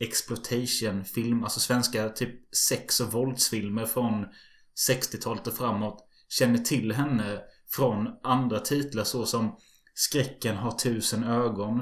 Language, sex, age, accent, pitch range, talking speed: Swedish, male, 20-39, native, 110-125 Hz, 115 wpm